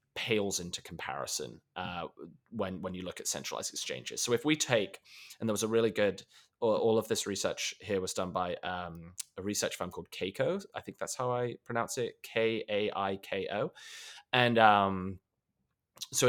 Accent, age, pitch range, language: British, 20-39, 100-130 Hz, English